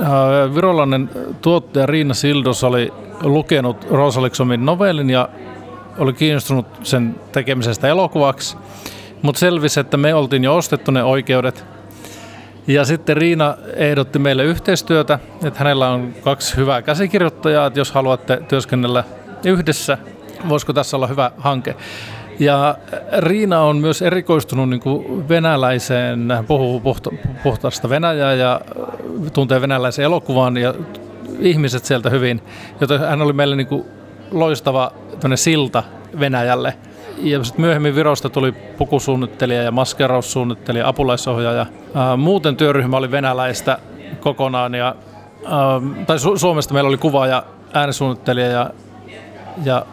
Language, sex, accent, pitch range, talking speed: Finnish, male, native, 125-150 Hz, 115 wpm